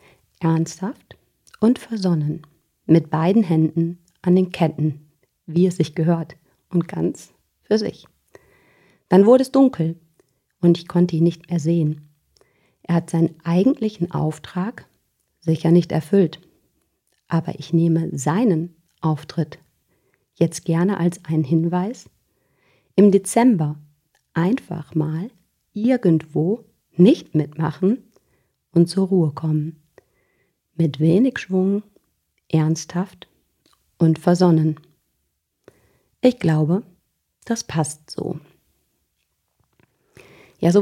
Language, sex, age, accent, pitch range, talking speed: German, female, 40-59, German, 160-200 Hz, 105 wpm